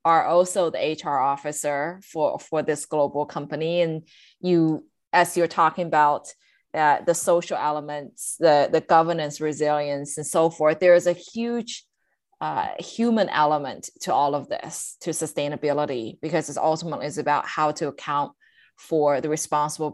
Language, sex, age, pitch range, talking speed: English, female, 20-39, 145-170 Hz, 155 wpm